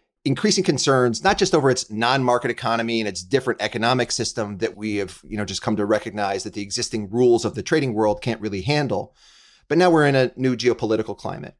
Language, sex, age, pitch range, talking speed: English, male, 30-49, 105-130 Hz, 210 wpm